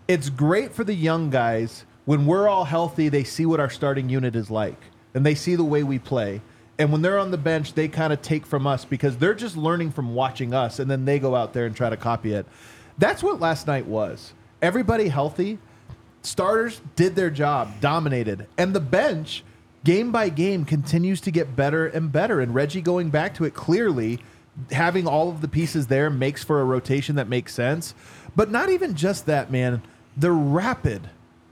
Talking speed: 205 wpm